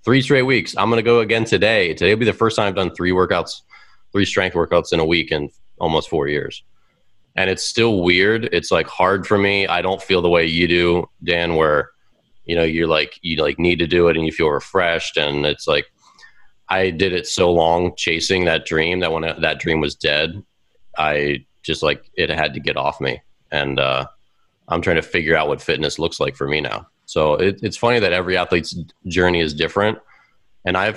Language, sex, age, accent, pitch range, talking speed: English, male, 30-49, American, 80-95 Hz, 220 wpm